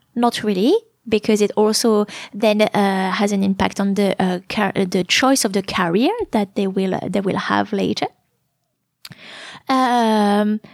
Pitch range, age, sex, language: 200-250 Hz, 20-39, female, English